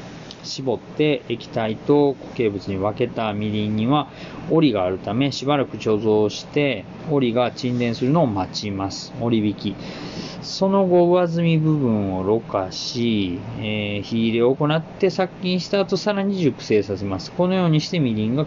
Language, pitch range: Japanese, 110-160 Hz